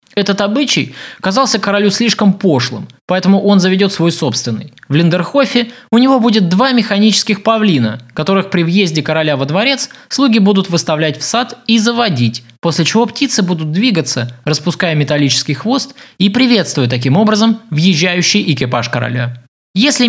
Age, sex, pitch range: 20-39, male, 145-215 Hz